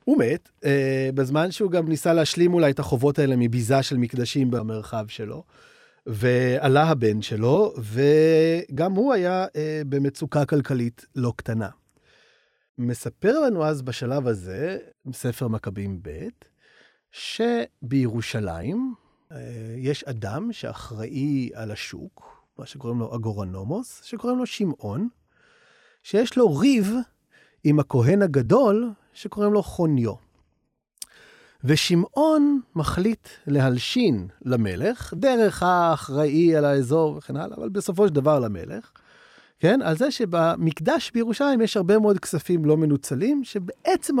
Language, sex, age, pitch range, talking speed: English, male, 30-49, 125-205 Hz, 115 wpm